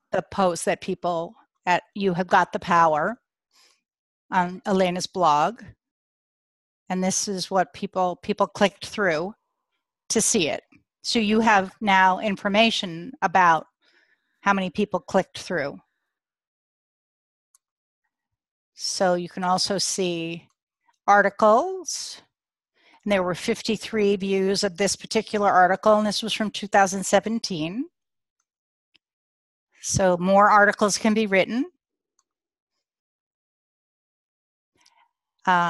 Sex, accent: female, American